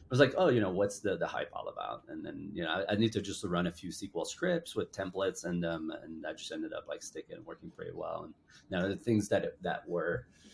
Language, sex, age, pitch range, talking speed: English, male, 30-49, 95-120 Hz, 285 wpm